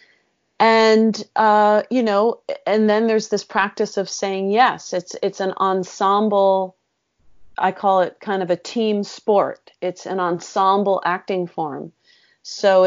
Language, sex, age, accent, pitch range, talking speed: English, female, 30-49, American, 180-205 Hz, 140 wpm